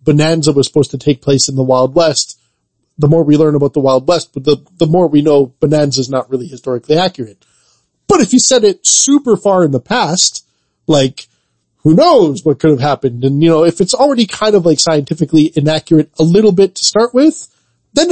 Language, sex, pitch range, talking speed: English, male, 135-185 Hz, 215 wpm